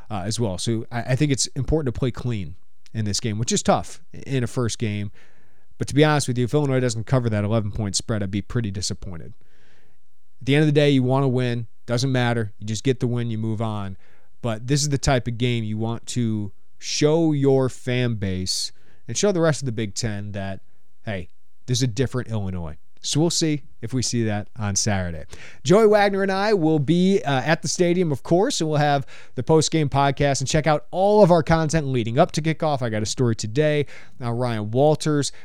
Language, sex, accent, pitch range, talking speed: English, male, American, 115-150 Hz, 230 wpm